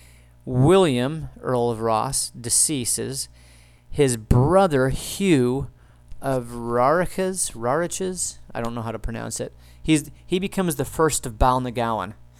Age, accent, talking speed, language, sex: 40-59, American, 120 wpm, English, male